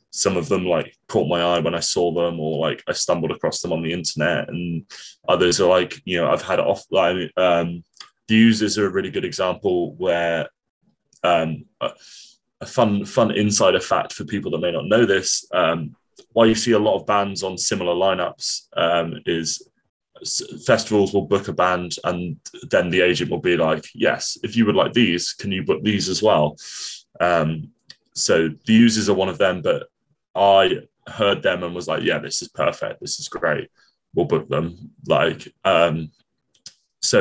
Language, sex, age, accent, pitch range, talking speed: English, male, 20-39, British, 85-110 Hz, 190 wpm